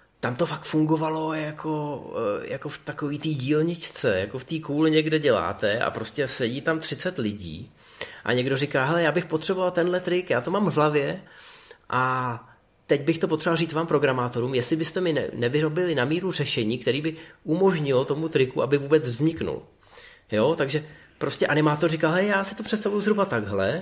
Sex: male